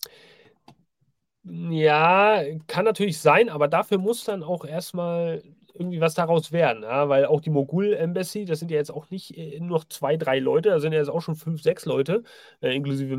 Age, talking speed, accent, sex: 30-49, 180 wpm, German, male